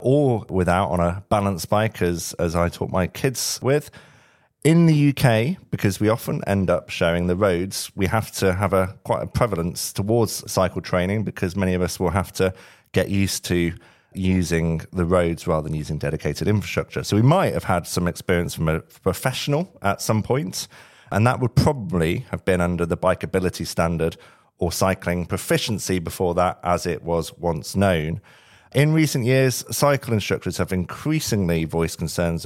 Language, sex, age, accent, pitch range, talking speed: English, male, 40-59, British, 85-115 Hz, 175 wpm